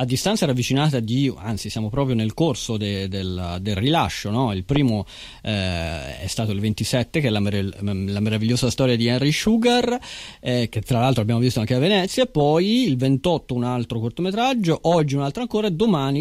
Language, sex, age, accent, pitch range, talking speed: Italian, male, 30-49, native, 105-135 Hz, 195 wpm